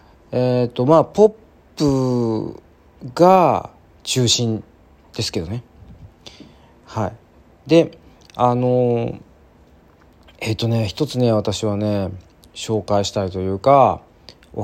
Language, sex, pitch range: Japanese, male, 95-135 Hz